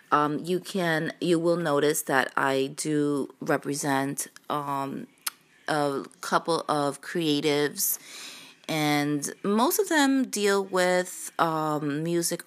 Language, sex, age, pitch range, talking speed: English, female, 20-39, 145-185 Hz, 110 wpm